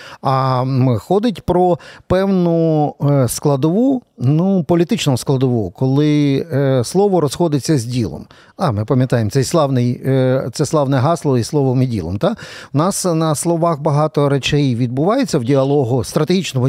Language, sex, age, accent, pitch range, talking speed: Ukrainian, male, 50-69, native, 130-160 Hz, 130 wpm